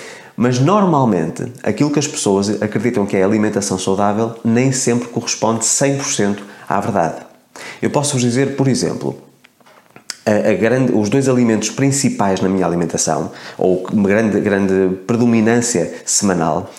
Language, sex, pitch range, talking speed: Portuguese, male, 100-125 Hz, 125 wpm